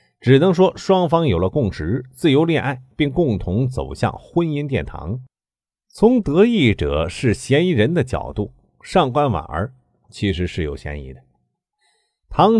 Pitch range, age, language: 90-140 Hz, 50-69, Chinese